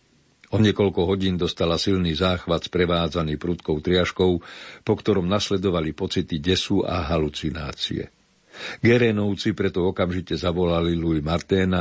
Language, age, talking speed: Slovak, 50-69, 110 wpm